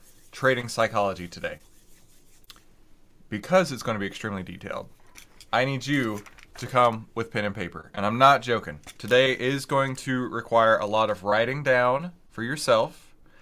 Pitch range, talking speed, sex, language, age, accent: 105-135 Hz, 155 wpm, male, English, 20-39, American